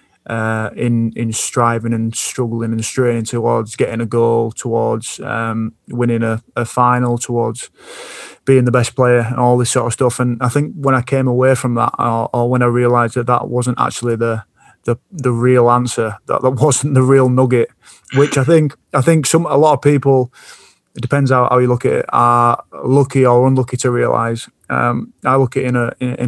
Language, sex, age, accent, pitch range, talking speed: English, male, 30-49, British, 115-130 Hz, 205 wpm